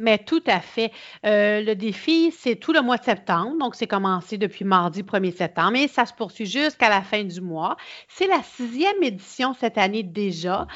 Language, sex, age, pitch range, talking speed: French, female, 40-59, 205-260 Hz, 200 wpm